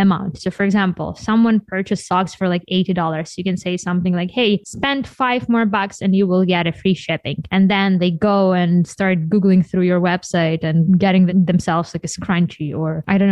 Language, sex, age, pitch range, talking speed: English, female, 20-39, 180-230 Hz, 205 wpm